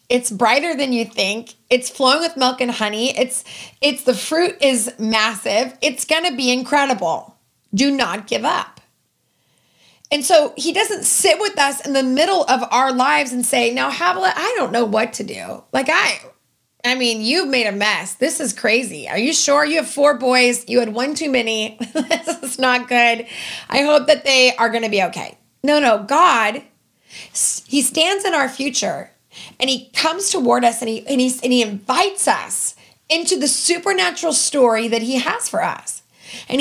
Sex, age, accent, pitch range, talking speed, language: female, 30-49, American, 240-310 Hz, 185 wpm, English